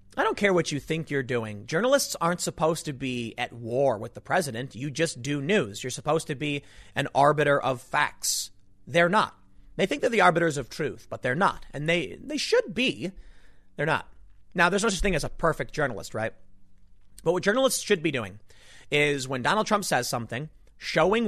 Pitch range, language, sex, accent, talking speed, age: 115-180 Hz, English, male, American, 205 wpm, 30-49